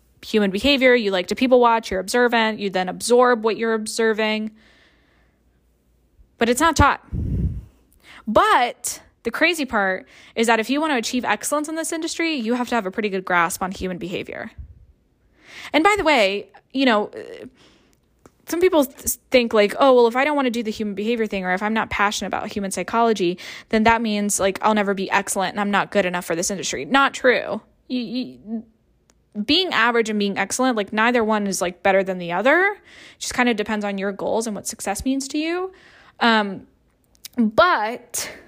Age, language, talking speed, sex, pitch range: 10-29, English, 195 wpm, female, 205-270 Hz